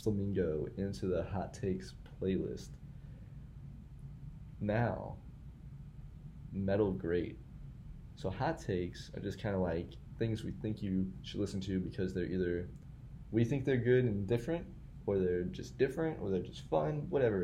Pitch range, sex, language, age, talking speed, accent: 95-130 Hz, male, English, 20-39, 145 wpm, American